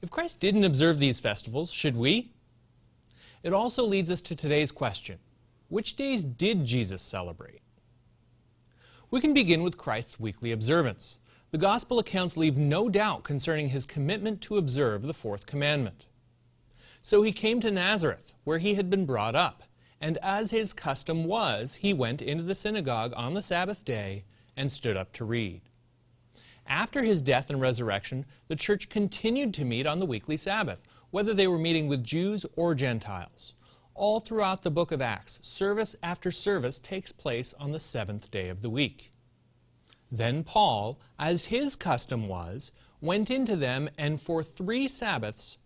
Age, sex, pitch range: 30-49, male, 120-195 Hz